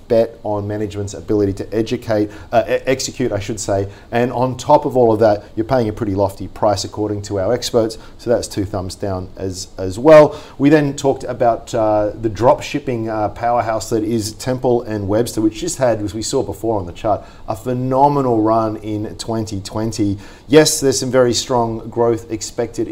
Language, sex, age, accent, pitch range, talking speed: English, male, 40-59, Australian, 100-125 Hz, 190 wpm